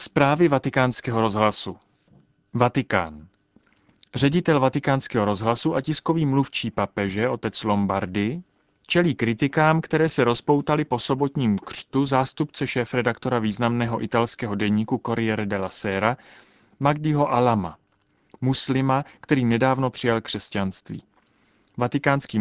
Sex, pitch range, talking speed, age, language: male, 110-135 Hz, 100 wpm, 30-49, Czech